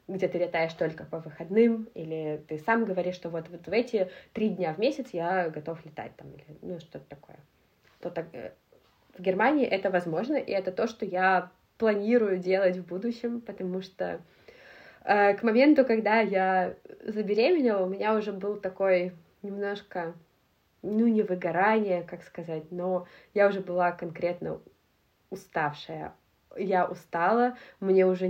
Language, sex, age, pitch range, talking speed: Russian, female, 20-39, 175-210 Hz, 150 wpm